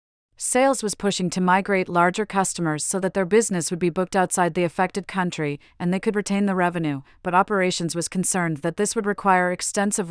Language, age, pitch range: English, 40-59, 165-200 Hz